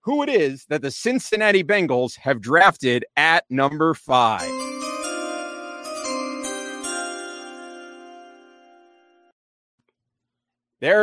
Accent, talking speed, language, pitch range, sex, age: American, 70 wpm, English, 150-225 Hz, male, 40-59